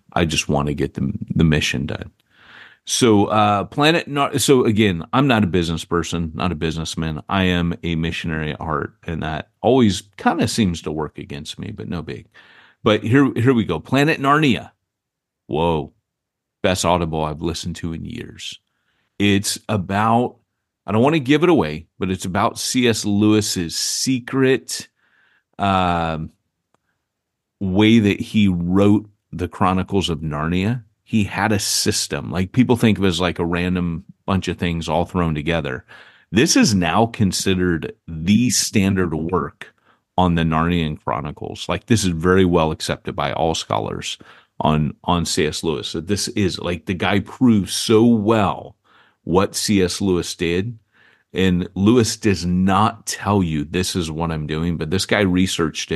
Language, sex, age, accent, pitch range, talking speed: English, male, 40-59, American, 85-105 Hz, 165 wpm